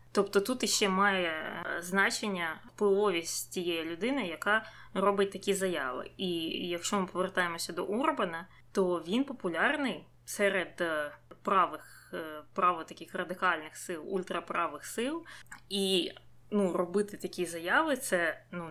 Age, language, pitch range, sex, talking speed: 20-39, Ukrainian, 170-205 Hz, female, 120 wpm